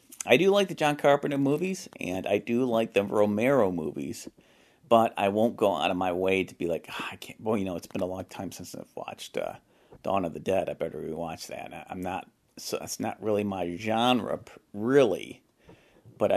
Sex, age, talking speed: male, 40-59, 215 wpm